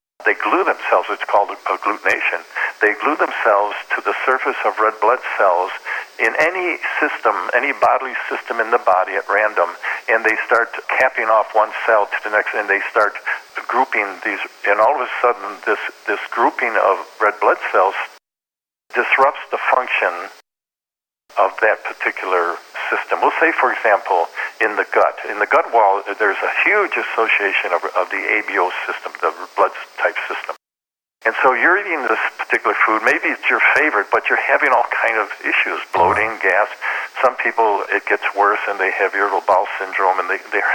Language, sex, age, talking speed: English, male, 50-69, 175 wpm